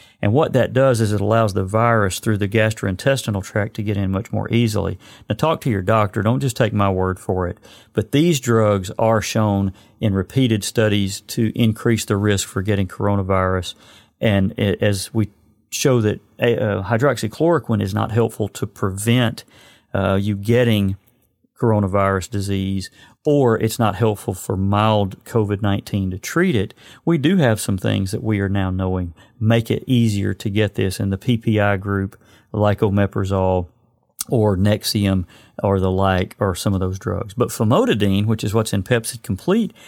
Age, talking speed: 40-59, 170 wpm